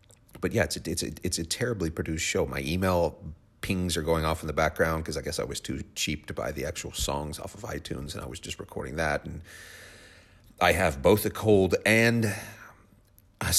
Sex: male